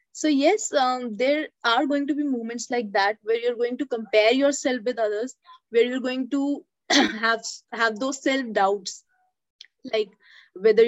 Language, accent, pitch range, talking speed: English, Indian, 230-315 Hz, 165 wpm